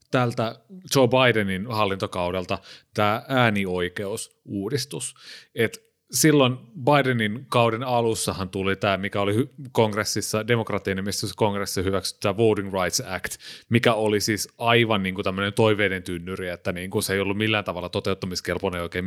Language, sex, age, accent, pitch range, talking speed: Finnish, male, 30-49, native, 100-125 Hz, 125 wpm